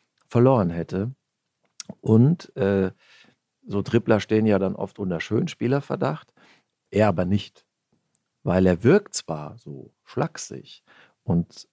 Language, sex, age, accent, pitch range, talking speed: German, male, 50-69, German, 95-120 Hz, 115 wpm